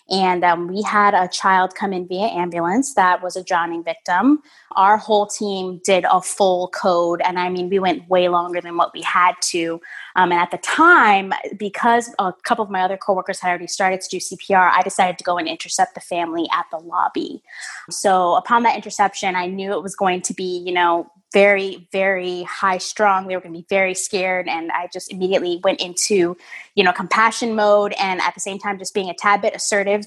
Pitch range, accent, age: 180-205 Hz, American, 20-39